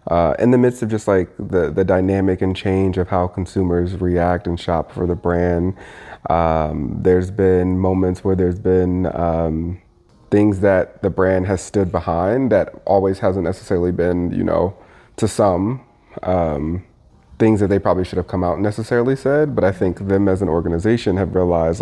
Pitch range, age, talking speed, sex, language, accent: 90-105 Hz, 30-49, 180 wpm, male, English, American